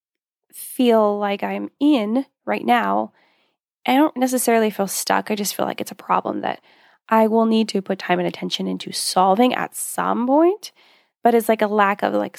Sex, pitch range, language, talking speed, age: female, 210-250 Hz, English, 190 wpm, 10-29